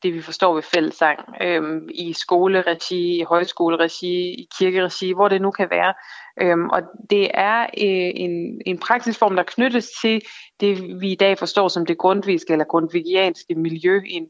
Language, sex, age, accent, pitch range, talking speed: Danish, female, 20-39, native, 170-205 Hz, 170 wpm